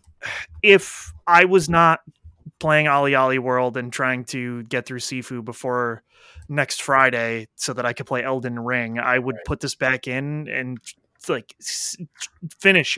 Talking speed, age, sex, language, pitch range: 155 wpm, 20-39, male, English, 125-150 Hz